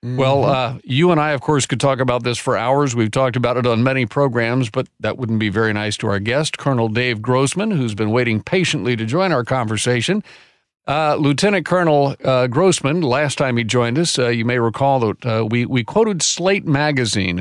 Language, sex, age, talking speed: English, male, 50-69, 210 wpm